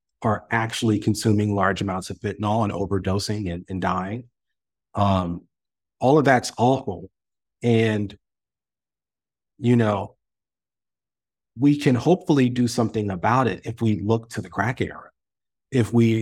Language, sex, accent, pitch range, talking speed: English, male, American, 100-115 Hz, 135 wpm